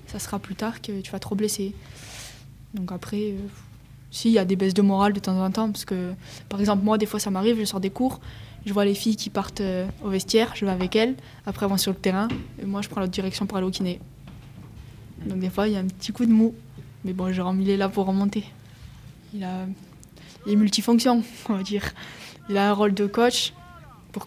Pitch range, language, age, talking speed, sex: 185-205 Hz, English, 20-39, 245 wpm, female